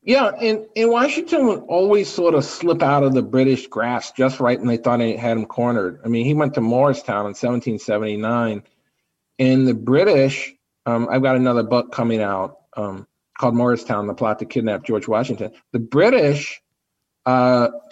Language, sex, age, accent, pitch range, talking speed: English, male, 40-59, American, 115-145 Hz, 180 wpm